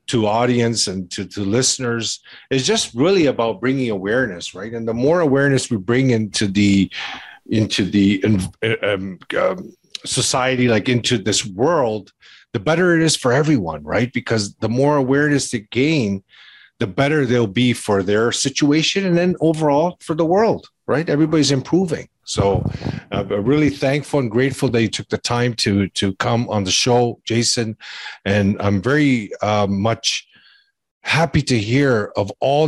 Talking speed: 160 wpm